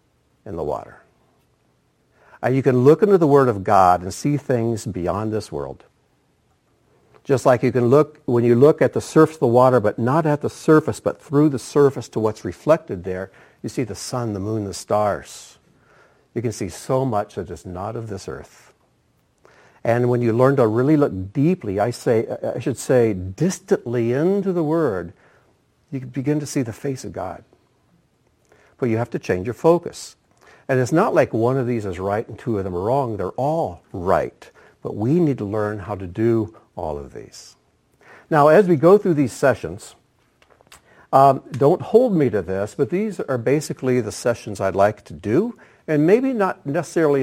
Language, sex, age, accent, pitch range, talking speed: English, male, 60-79, American, 105-145 Hz, 195 wpm